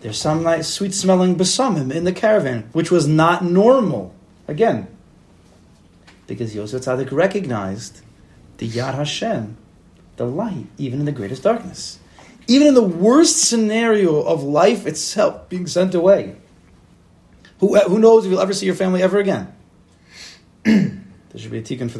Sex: male